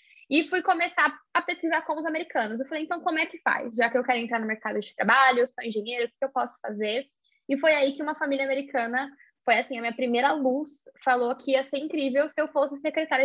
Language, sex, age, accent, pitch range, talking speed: Portuguese, female, 10-29, Brazilian, 240-300 Hz, 245 wpm